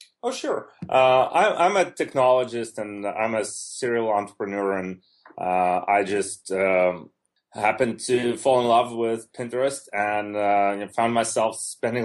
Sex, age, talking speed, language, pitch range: male, 30-49, 145 wpm, English, 95-115 Hz